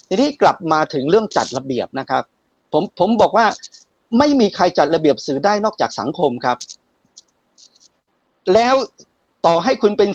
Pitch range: 140-200 Hz